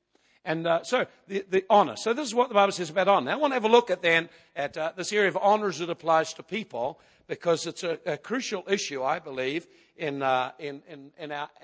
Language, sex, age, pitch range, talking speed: English, male, 60-79, 140-185 Hz, 245 wpm